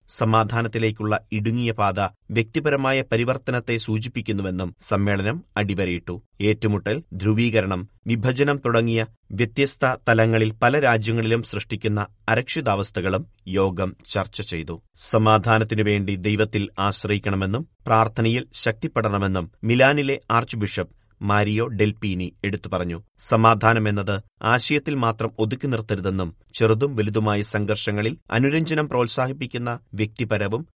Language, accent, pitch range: Malayalam, native, 105-120 Hz